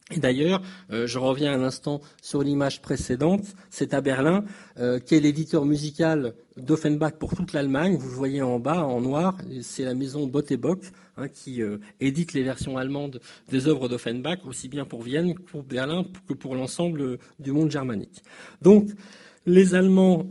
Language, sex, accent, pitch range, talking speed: French, male, French, 135-175 Hz, 170 wpm